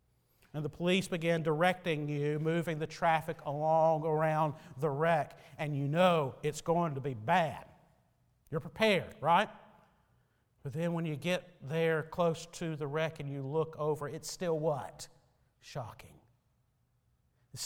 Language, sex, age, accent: English, male, 50-69, American